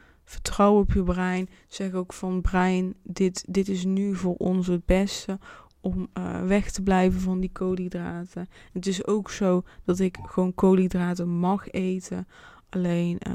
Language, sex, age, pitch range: Dutch, female, 20-39, 170-190 Hz